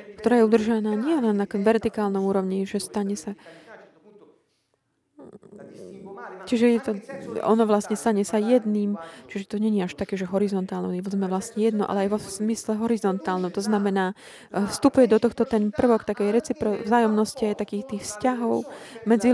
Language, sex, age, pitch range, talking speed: Slovak, female, 20-39, 200-240 Hz, 150 wpm